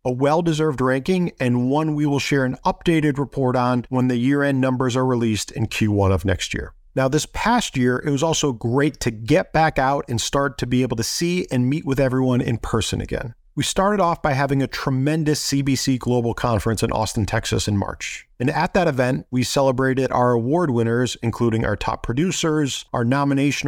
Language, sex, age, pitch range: English, male, 40-59, 115-145 Hz